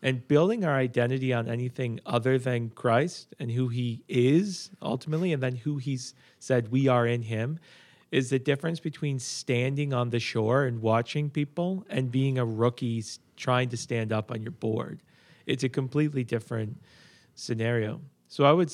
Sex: male